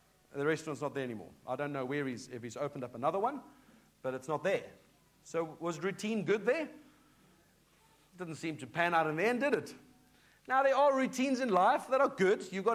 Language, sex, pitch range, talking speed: English, male, 160-220 Hz, 220 wpm